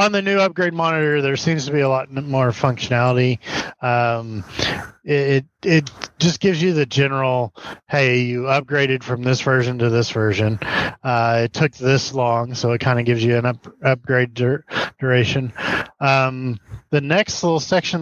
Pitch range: 120-145 Hz